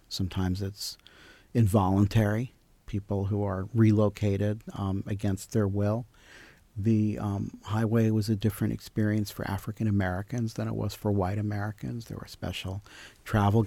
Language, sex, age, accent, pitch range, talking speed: English, male, 50-69, American, 100-115 Hz, 130 wpm